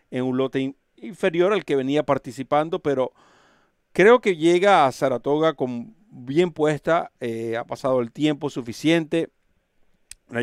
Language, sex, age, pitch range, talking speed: Spanish, male, 50-69, 120-145 Hz, 140 wpm